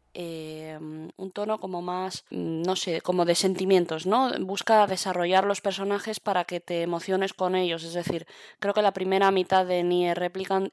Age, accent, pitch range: 20-39, Spanish, 175-200 Hz